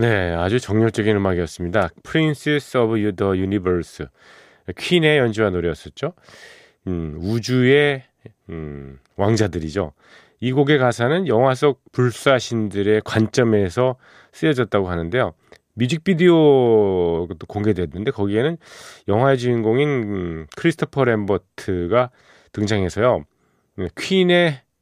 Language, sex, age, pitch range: Korean, male, 40-59, 95-135 Hz